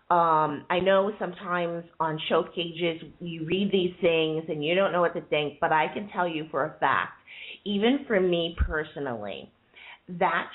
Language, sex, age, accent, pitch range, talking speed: English, female, 30-49, American, 155-195 Hz, 175 wpm